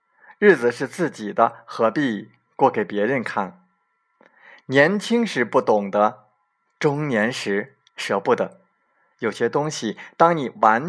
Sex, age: male, 20-39